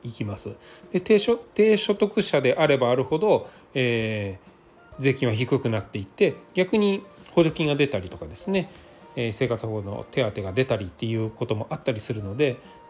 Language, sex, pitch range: Japanese, male, 115-165 Hz